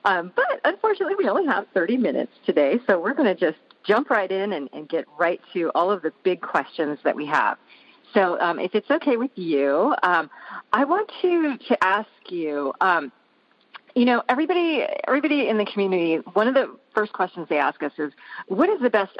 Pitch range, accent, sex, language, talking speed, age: 160-230 Hz, American, female, English, 205 wpm, 40-59